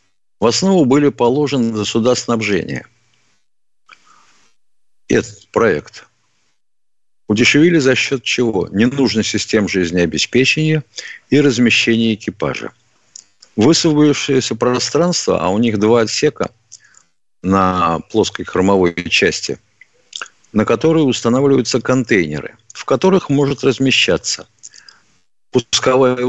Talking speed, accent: 90 wpm, native